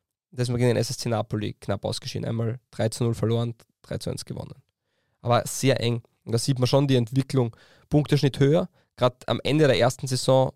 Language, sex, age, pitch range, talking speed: German, male, 20-39, 115-140 Hz, 180 wpm